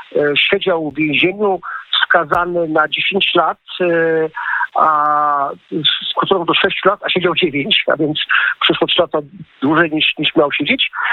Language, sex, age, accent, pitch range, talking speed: Polish, male, 50-69, native, 160-195 Hz, 135 wpm